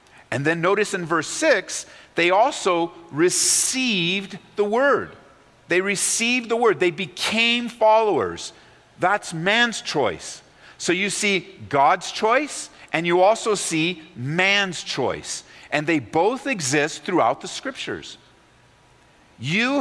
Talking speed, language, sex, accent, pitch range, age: 120 wpm, English, male, American, 160-210 Hz, 50-69